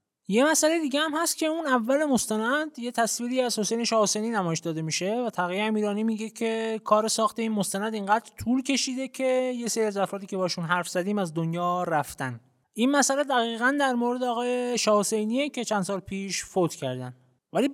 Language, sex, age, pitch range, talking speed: Persian, male, 20-39, 175-240 Hz, 185 wpm